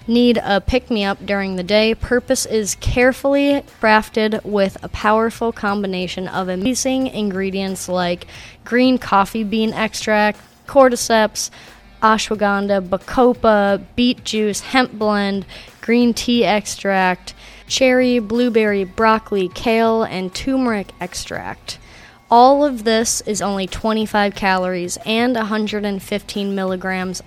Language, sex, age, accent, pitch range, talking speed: English, female, 20-39, American, 195-230 Hz, 110 wpm